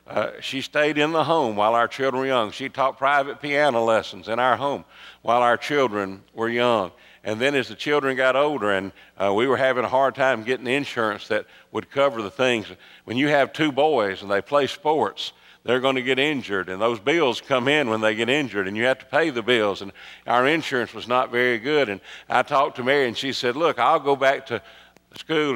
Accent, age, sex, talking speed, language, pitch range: American, 50-69, male, 230 wpm, English, 110-135 Hz